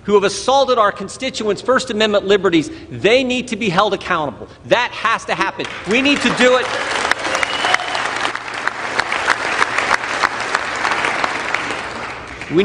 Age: 50-69